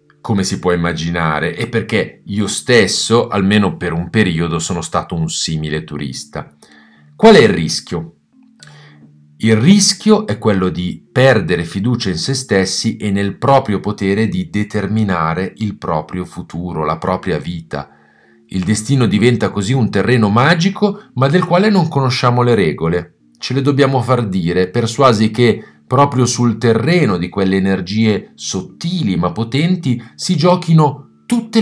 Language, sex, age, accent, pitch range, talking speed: Italian, male, 40-59, native, 90-130 Hz, 145 wpm